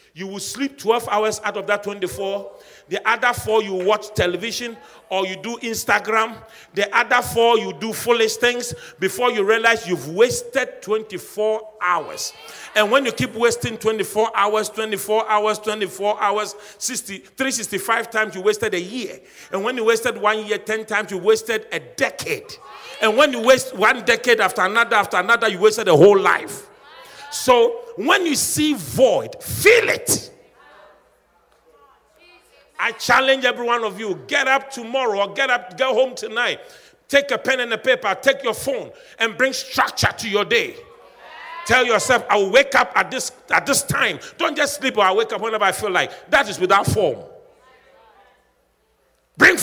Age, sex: 40-59, male